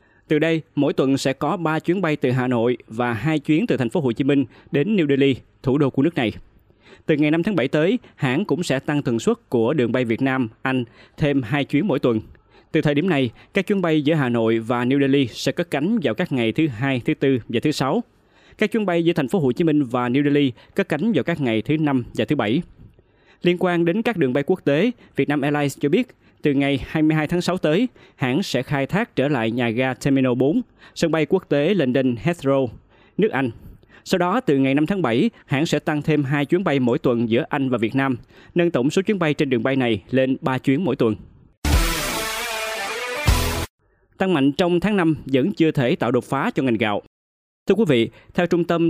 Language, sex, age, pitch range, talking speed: Vietnamese, male, 20-39, 125-165 Hz, 235 wpm